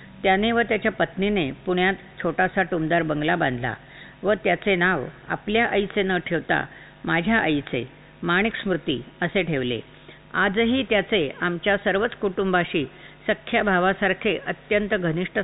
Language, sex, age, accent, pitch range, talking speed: Marathi, female, 50-69, native, 170-210 Hz, 120 wpm